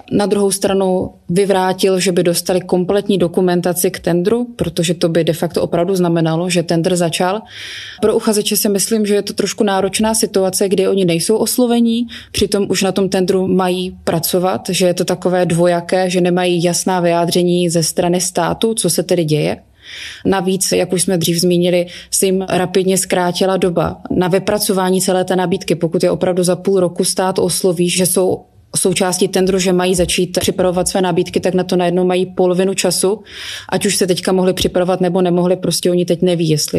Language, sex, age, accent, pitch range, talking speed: Czech, female, 20-39, native, 180-195 Hz, 185 wpm